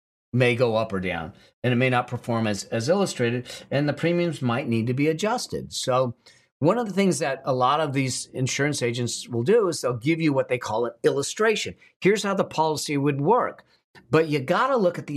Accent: American